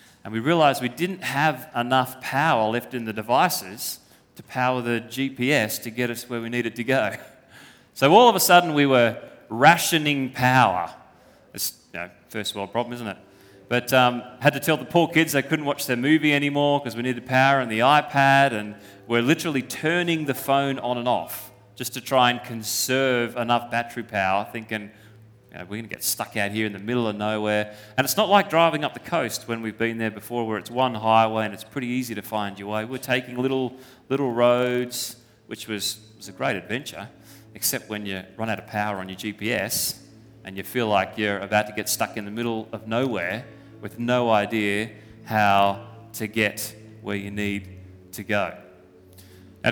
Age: 30-49